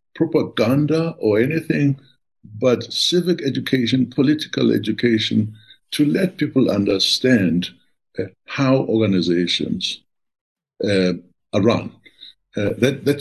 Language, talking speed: English, 95 wpm